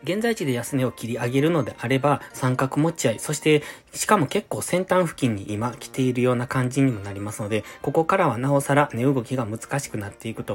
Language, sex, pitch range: Japanese, male, 115-155 Hz